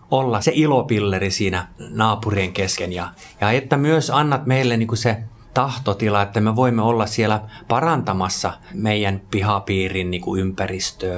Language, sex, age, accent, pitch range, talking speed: Finnish, male, 30-49, native, 100-120 Hz, 135 wpm